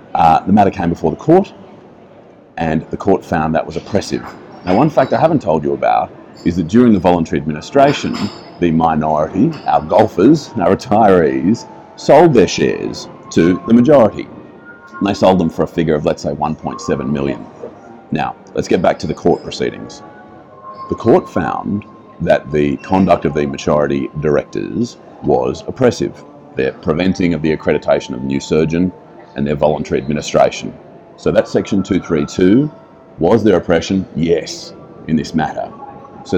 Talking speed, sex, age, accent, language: 160 wpm, male, 40-59, Australian, English